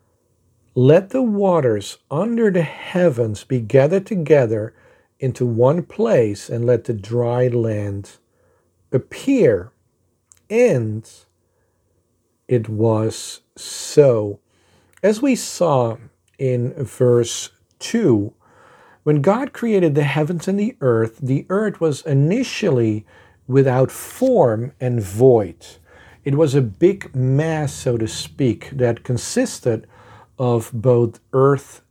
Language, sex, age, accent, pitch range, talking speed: English, male, 50-69, American, 110-155 Hz, 105 wpm